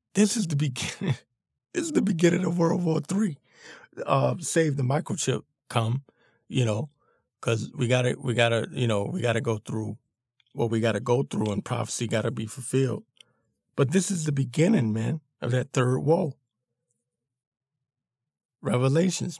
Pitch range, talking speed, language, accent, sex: 115-140 Hz, 160 wpm, English, American, male